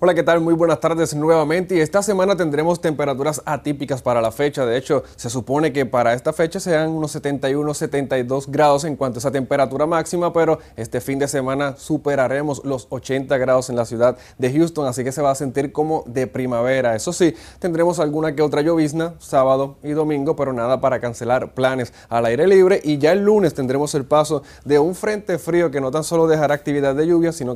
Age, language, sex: 20-39, Spanish, male